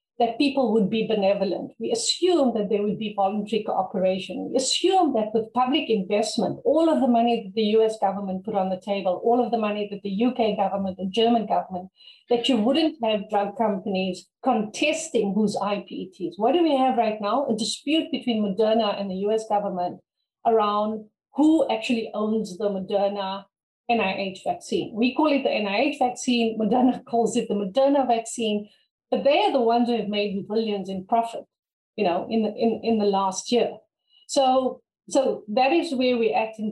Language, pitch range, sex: English, 200-245 Hz, female